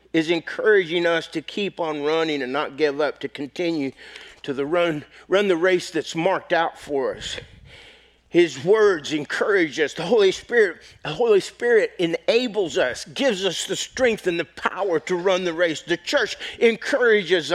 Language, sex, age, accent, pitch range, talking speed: English, male, 50-69, American, 190-270 Hz, 170 wpm